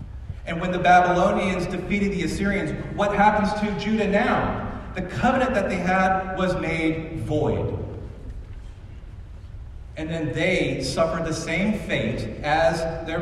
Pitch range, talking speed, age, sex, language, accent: 110-170 Hz, 130 wpm, 40-59, male, English, American